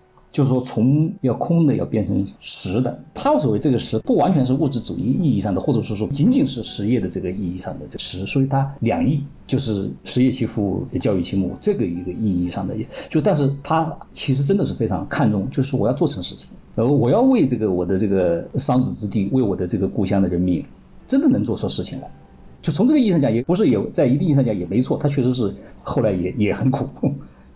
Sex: male